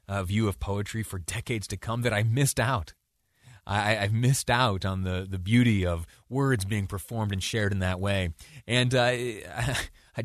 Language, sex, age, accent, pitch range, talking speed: English, male, 30-49, American, 95-130 Hz, 185 wpm